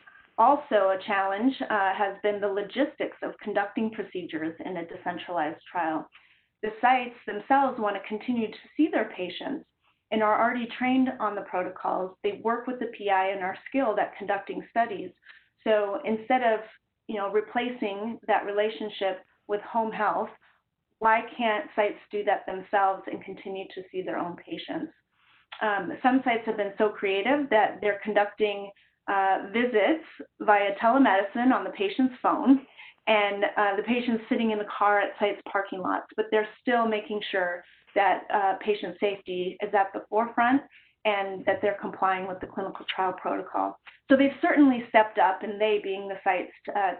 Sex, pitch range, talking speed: female, 195-235 Hz, 165 wpm